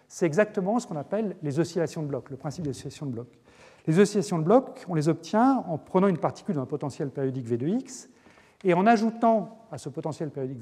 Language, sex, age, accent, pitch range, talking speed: French, male, 40-59, French, 135-190 Hz, 225 wpm